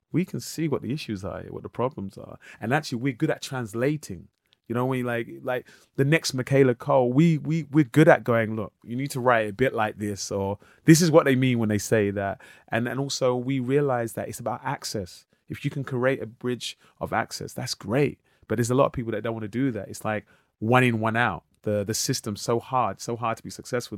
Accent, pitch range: British, 105-125 Hz